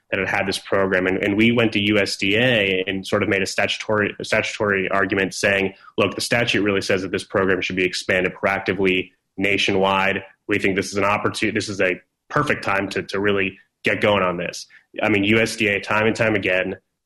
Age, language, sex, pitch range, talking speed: 20-39, English, male, 95-110 Hz, 210 wpm